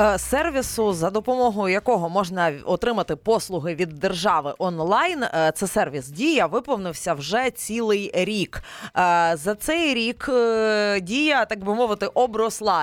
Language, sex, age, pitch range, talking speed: Ukrainian, female, 20-39, 175-235 Hz, 115 wpm